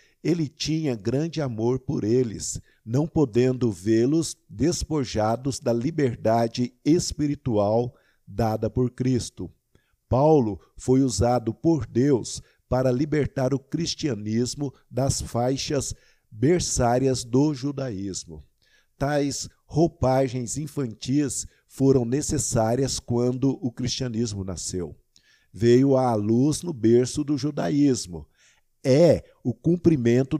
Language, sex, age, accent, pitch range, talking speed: Portuguese, male, 50-69, Brazilian, 115-145 Hz, 95 wpm